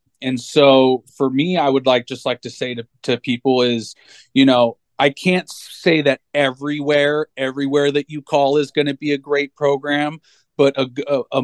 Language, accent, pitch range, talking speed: English, American, 120-135 Hz, 185 wpm